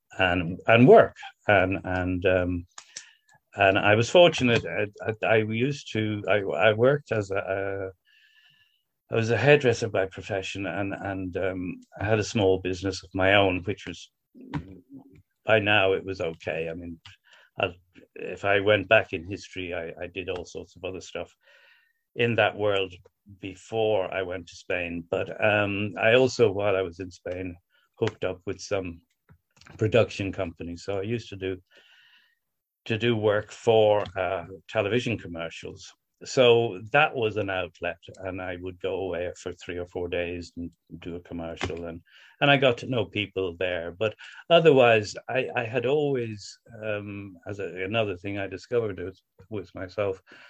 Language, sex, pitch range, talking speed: English, male, 95-110 Hz, 165 wpm